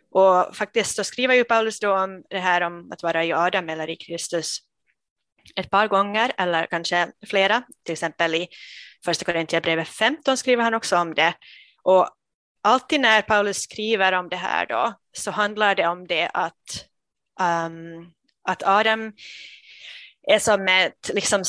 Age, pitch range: 20-39, 175-205 Hz